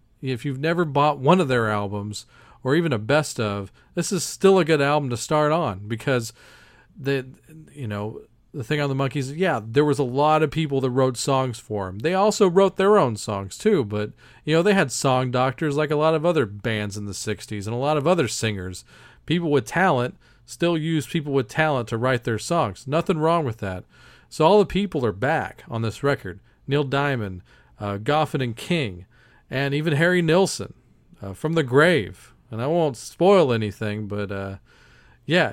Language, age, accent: English, 40-59, American